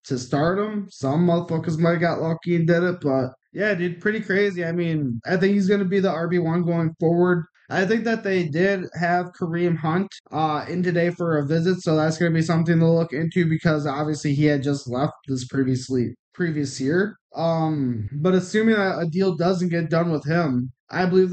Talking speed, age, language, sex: 210 wpm, 20-39, English, male